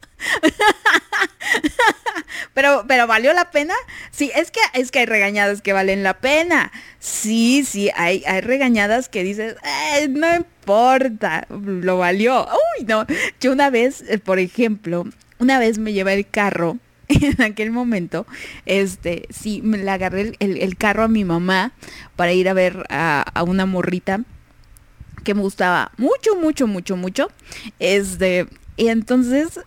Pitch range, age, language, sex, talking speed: 200-300 Hz, 20-39, Portuguese, female, 150 wpm